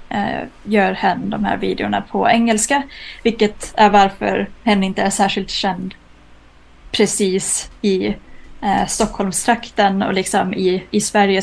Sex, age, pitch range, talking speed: female, 20-39, 190-225 Hz, 125 wpm